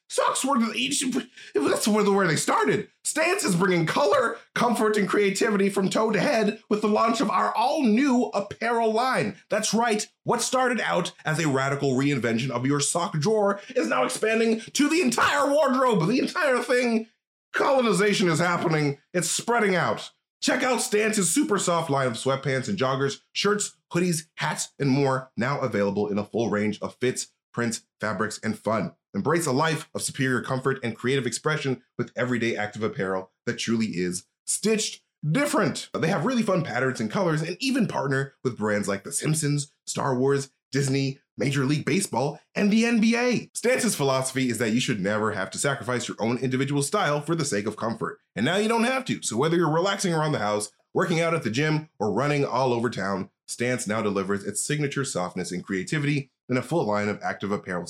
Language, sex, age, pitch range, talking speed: English, male, 30-49, 130-215 Hz, 190 wpm